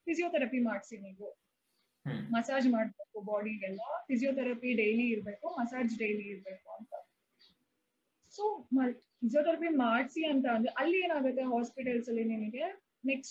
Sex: female